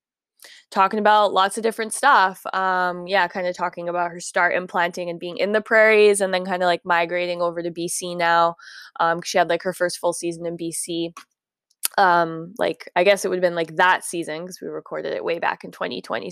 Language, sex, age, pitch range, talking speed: English, female, 10-29, 165-190 Hz, 215 wpm